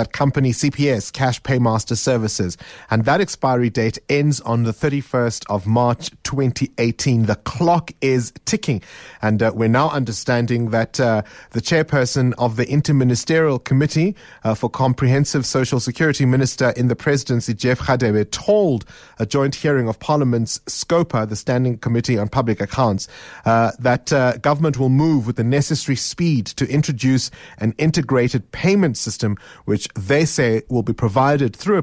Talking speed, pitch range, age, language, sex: 150 wpm, 115-140 Hz, 30-49, English, male